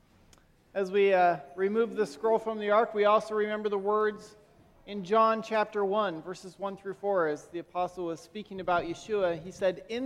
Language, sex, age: English, male, 40-59